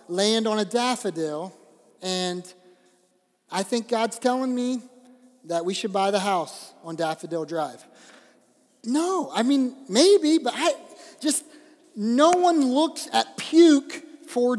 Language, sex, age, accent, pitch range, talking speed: English, male, 30-49, American, 210-275 Hz, 130 wpm